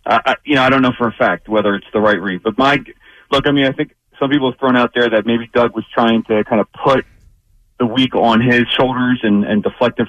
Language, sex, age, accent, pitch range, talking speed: English, male, 30-49, American, 105-125 Hz, 260 wpm